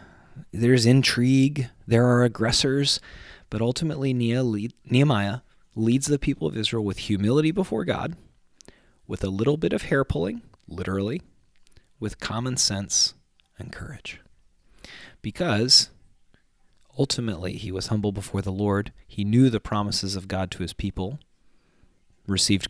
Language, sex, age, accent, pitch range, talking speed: English, male, 30-49, American, 95-130 Hz, 125 wpm